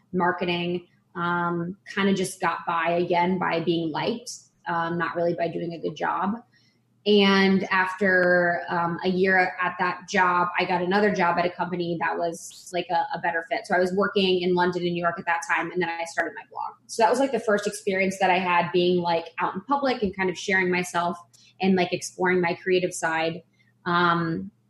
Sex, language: female, English